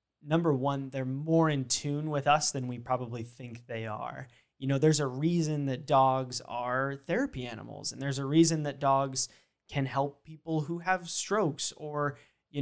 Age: 20-39